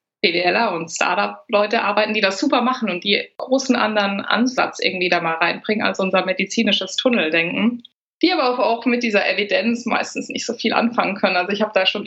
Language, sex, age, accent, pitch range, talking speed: German, female, 20-39, German, 185-225 Hz, 200 wpm